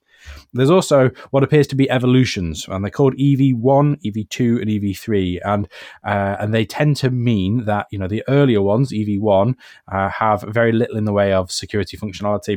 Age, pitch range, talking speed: 20-39, 100-125 Hz, 180 wpm